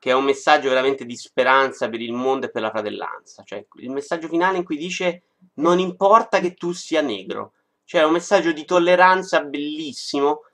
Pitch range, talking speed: 170-275 Hz, 195 wpm